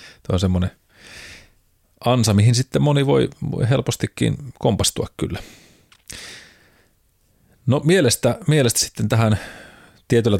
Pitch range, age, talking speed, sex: 90-105 Hz, 30-49, 105 wpm, male